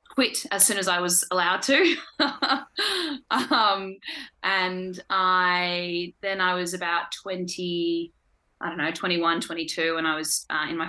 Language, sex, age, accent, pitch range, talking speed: English, female, 20-39, Australian, 160-195 Hz, 150 wpm